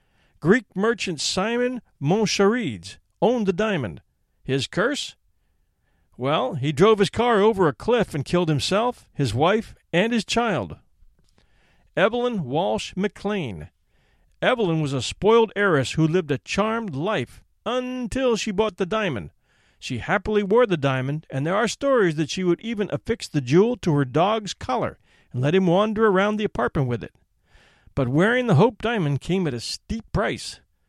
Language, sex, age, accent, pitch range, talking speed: English, male, 40-59, American, 135-215 Hz, 160 wpm